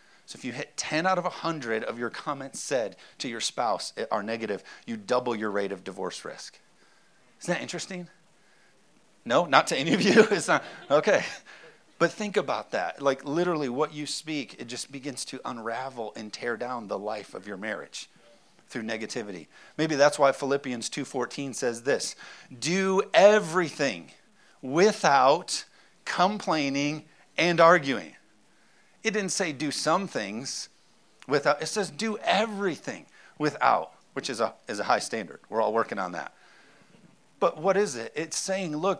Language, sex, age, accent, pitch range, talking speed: English, male, 40-59, American, 140-185 Hz, 160 wpm